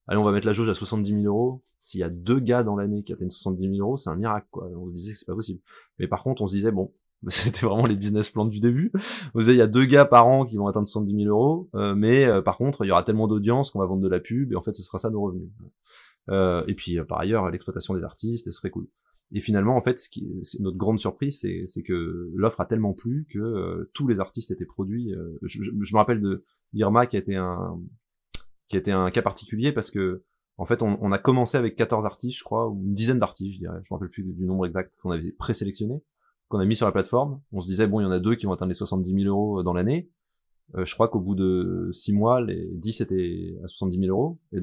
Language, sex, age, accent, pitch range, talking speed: French, male, 20-39, French, 95-115 Hz, 280 wpm